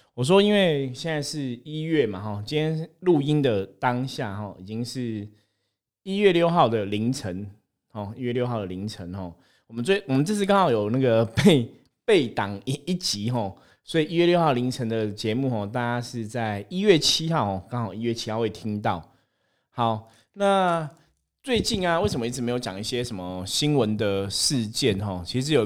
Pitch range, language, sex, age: 105-145 Hz, Chinese, male, 20-39